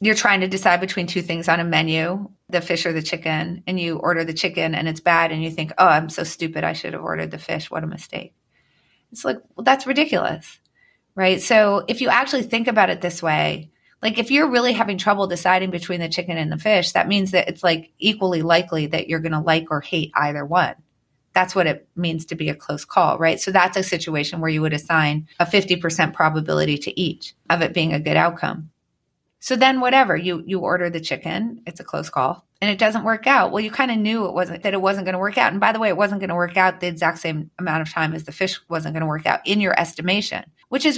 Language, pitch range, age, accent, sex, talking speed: English, 160-205 Hz, 30-49, American, female, 250 wpm